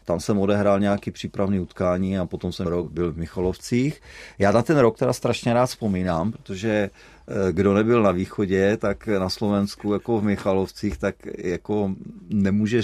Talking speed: 165 wpm